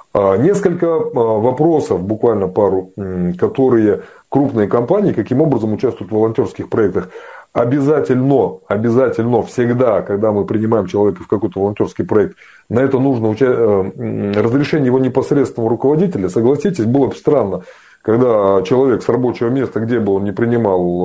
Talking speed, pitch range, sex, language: 130 wpm, 110-145 Hz, male, Russian